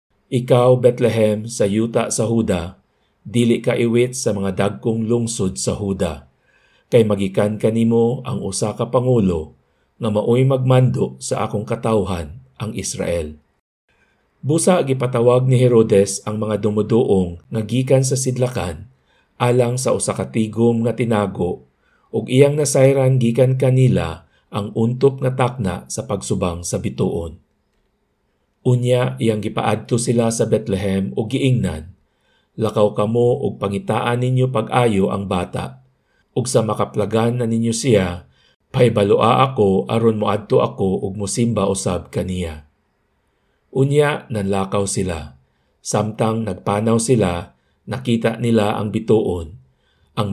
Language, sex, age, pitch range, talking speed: Filipino, male, 50-69, 100-125 Hz, 120 wpm